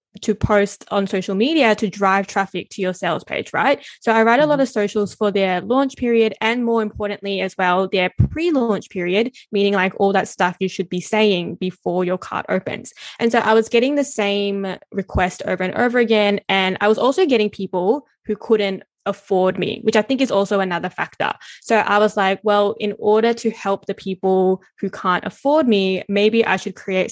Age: 10-29